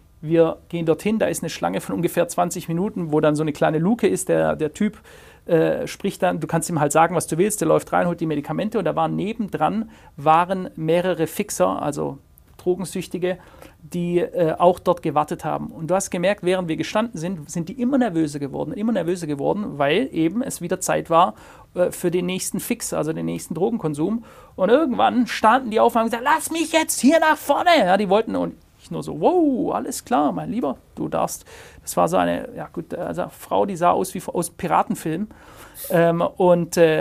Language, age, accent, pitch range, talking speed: German, 40-59, German, 165-220 Hz, 210 wpm